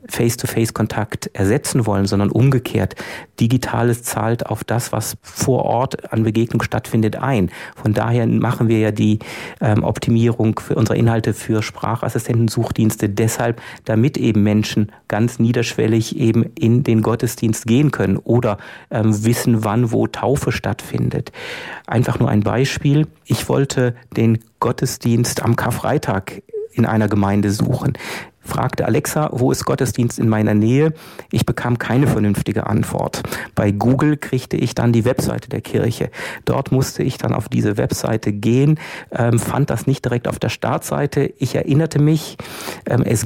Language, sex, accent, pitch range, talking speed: German, male, German, 110-135 Hz, 140 wpm